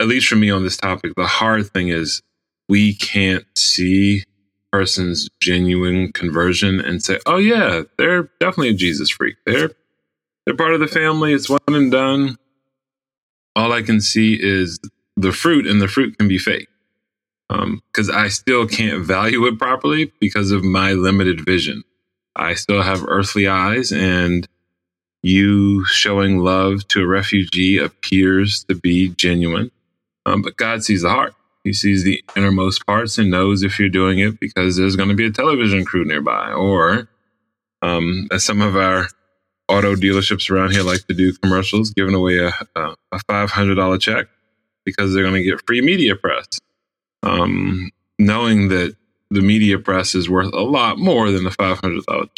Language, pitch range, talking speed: English, 95-105 Hz, 170 wpm